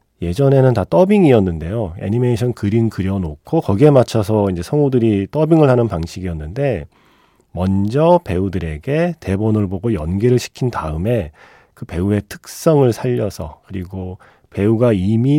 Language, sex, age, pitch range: Korean, male, 30-49, 95-130 Hz